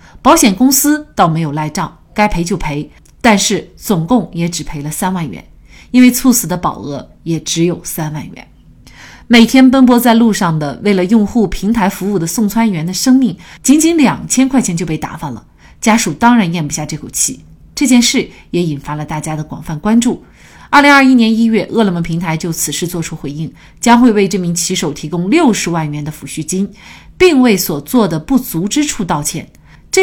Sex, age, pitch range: female, 30-49, 160-230 Hz